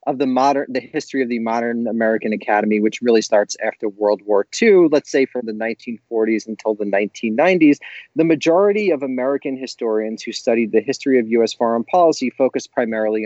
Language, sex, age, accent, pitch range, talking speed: English, male, 30-49, American, 110-145 Hz, 180 wpm